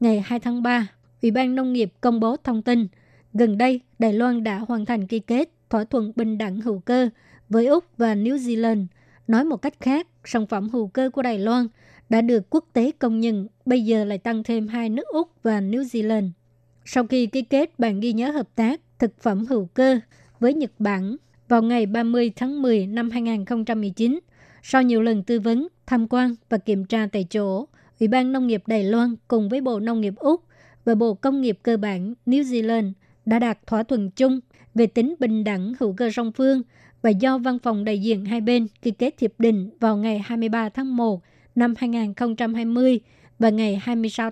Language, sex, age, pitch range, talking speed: Vietnamese, male, 20-39, 220-250 Hz, 205 wpm